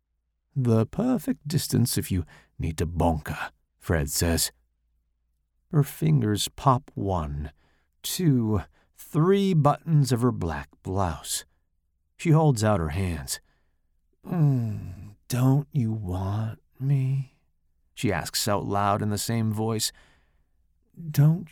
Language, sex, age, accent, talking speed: English, male, 50-69, American, 110 wpm